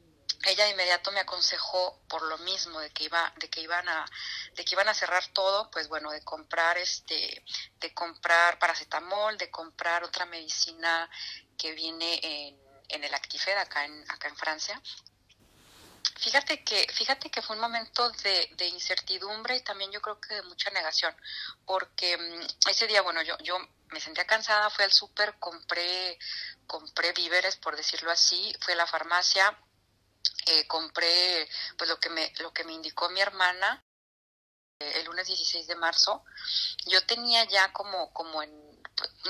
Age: 30-49